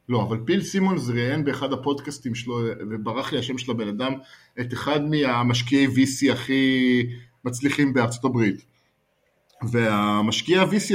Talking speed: 125 wpm